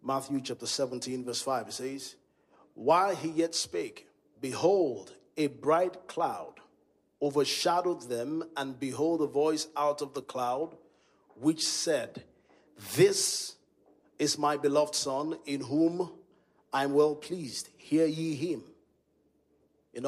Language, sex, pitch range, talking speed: English, male, 140-175 Hz, 125 wpm